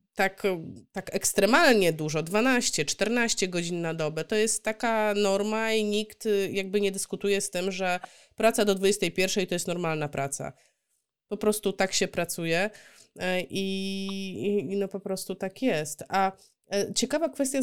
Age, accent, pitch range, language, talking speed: 20-39, native, 175-215 Hz, Polish, 145 wpm